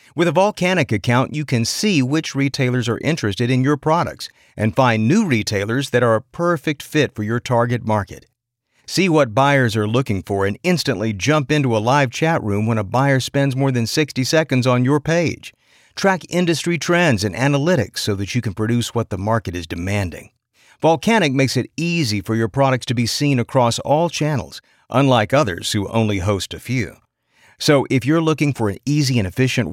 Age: 50-69